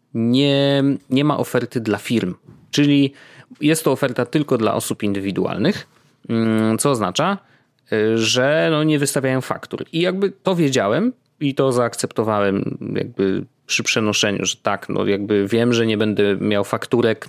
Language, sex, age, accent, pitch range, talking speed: Polish, male, 20-39, native, 105-145 Hz, 140 wpm